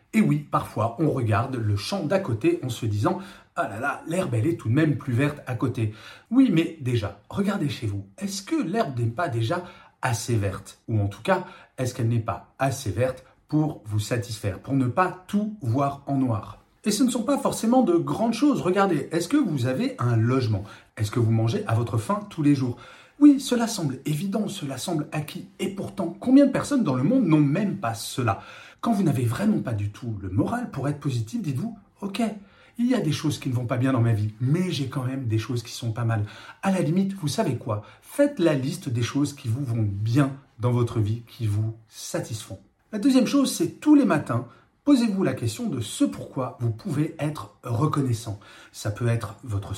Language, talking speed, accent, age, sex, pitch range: French, 220 wpm, French, 40-59, male, 115-180 Hz